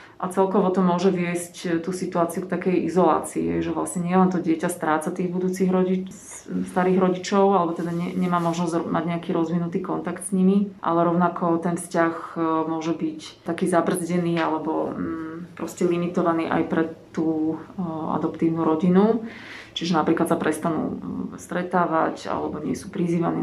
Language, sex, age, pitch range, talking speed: Slovak, female, 30-49, 165-180 Hz, 145 wpm